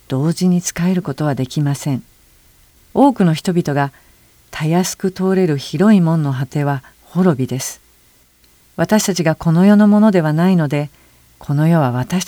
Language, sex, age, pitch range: Japanese, female, 50-69, 135-185 Hz